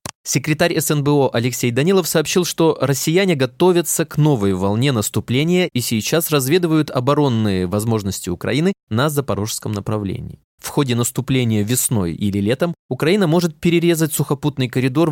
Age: 20-39